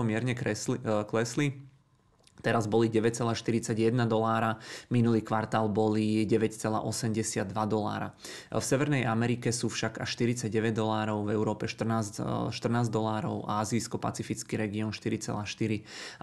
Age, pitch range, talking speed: 20-39, 110-115 Hz, 105 wpm